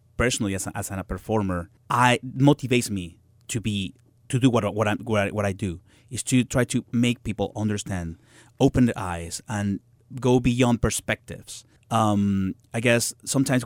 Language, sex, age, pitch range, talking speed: English, male, 30-49, 105-120 Hz, 170 wpm